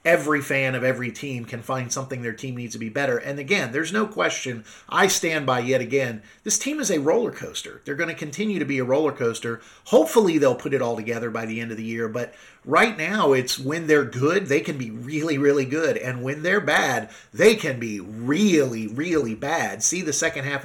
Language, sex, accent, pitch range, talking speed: English, male, American, 130-165 Hz, 225 wpm